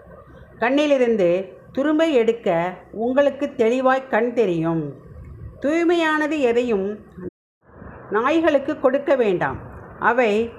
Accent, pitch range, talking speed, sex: native, 215-285 Hz, 75 wpm, female